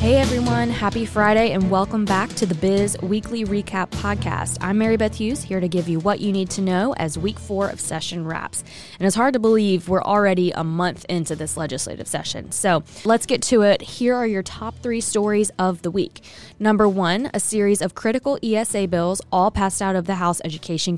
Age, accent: 20-39, American